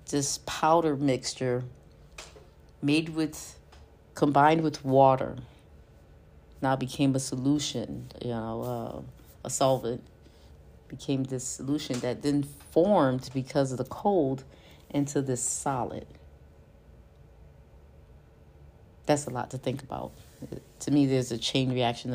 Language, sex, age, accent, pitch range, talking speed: English, female, 40-59, American, 115-160 Hz, 115 wpm